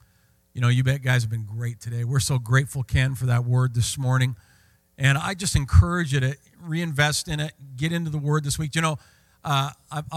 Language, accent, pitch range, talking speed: English, American, 120-155 Hz, 215 wpm